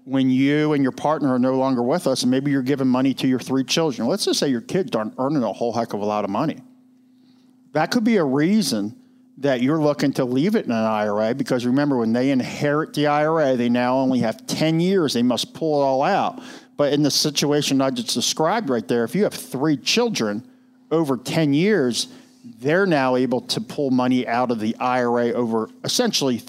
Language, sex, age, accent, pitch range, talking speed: English, male, 50-69, American, 125-170 Hz, 220 wpm